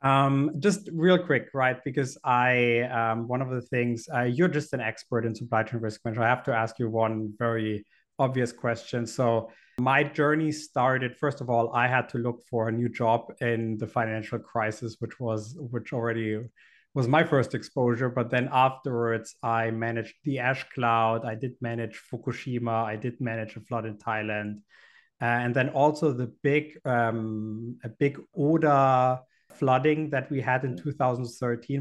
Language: English